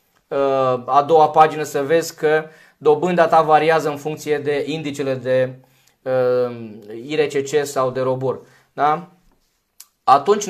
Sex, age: male, 20-39